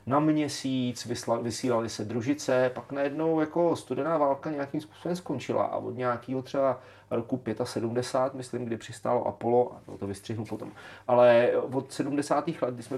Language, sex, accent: Czech, male, native